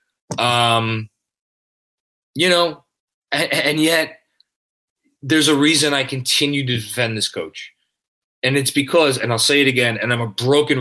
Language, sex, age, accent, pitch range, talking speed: English, male, 20-39, American, 115-140 Hz, 150 wpm